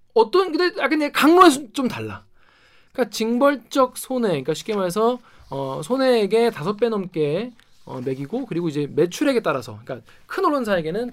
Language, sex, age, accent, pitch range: Korean, male, 20-39, native, 160-255 Hz